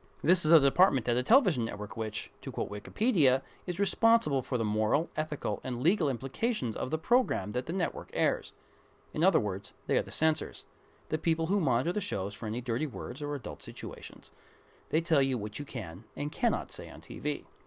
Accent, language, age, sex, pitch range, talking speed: American, English, 40-59, male, 120-175 Hz, 200 wpm